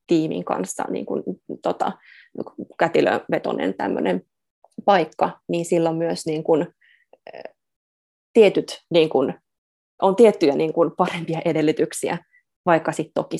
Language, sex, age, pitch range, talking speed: Finnish, female, 20-39, 160-200 Hz, 110 wpm